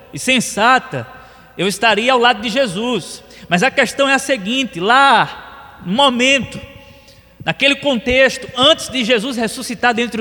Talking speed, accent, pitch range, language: 140 wpm, Brazilian, 160-240 Hz, Portuguese